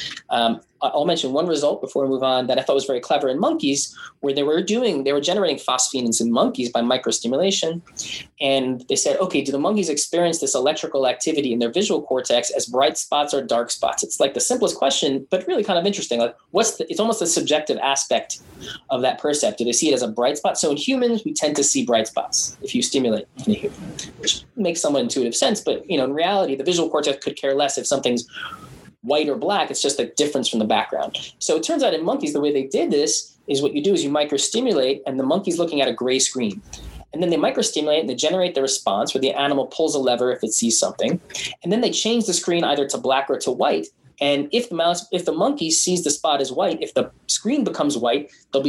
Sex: male